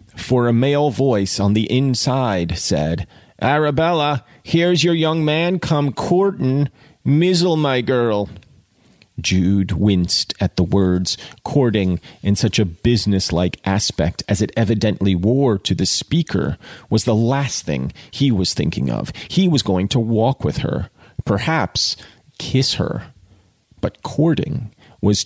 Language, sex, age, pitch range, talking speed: English, male, 30-49, 95-125 Hz, 135 wpm